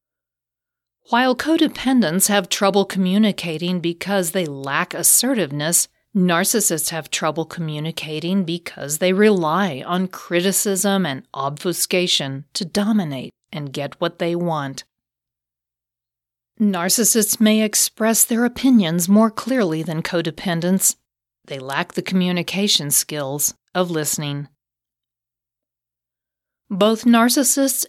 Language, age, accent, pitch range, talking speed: English, 40-59, American, 155-210 Hz, 95 wpm